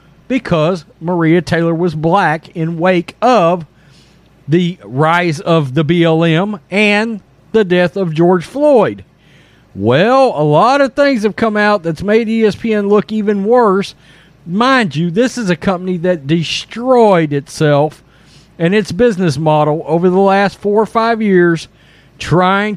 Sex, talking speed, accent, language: male, 140 wpm, American, English